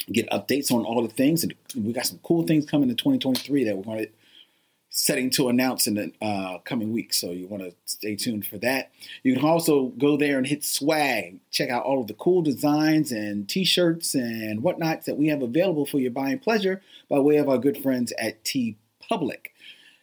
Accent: American